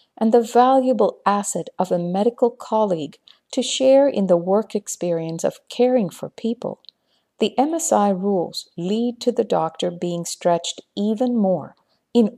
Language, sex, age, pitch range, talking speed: English, female, 50-69, 180-240 Hz, 145 wpm